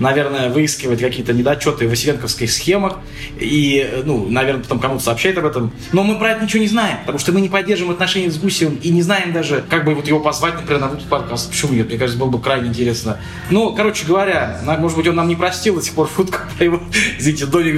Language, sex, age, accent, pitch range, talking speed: Russian, male, 20-39, native, 135-195 Hz, 225 wpm